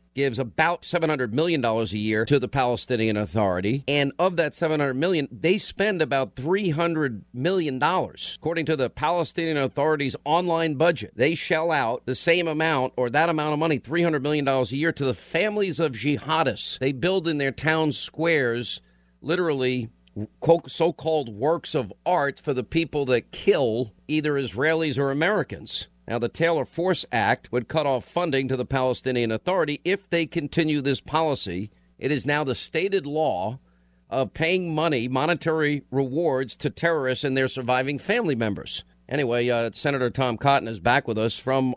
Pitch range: 120-160 Hz